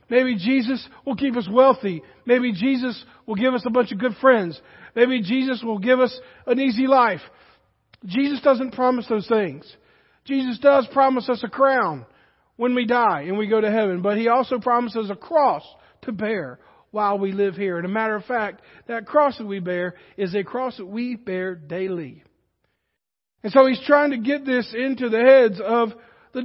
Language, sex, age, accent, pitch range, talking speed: English, male, 50-69, American, 210-260 Hz, 190 wpm